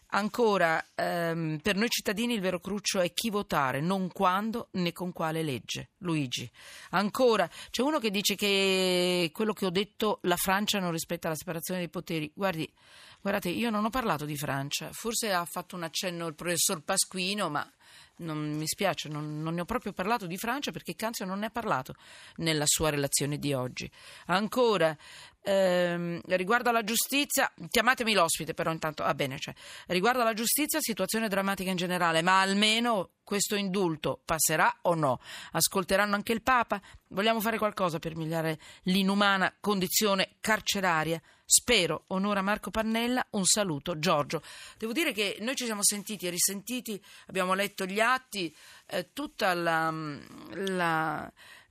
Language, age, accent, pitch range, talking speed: Italian, 40-59, native, 165-215 Hz, 160 wpm